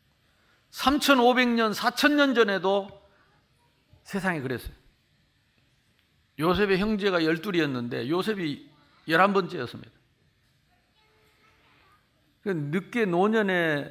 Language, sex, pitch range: Korean, male, 140-200 Hz